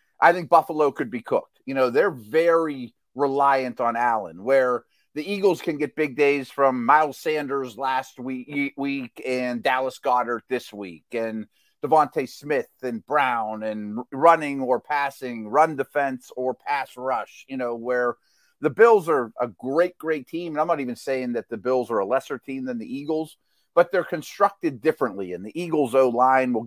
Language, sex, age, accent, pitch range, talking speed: English, male, 30-49, American, 125-160 Hz, 180 wpm